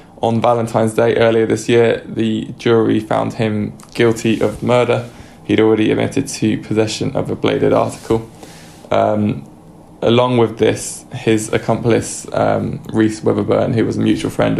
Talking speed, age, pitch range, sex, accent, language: 150 wpm, 20-39, 110-115 Hz, male, British, English